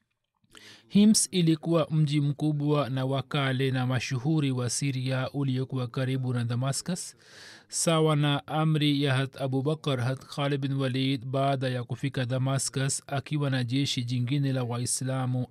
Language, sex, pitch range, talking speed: Swahili, male, 135-150 Hz, 135 wpm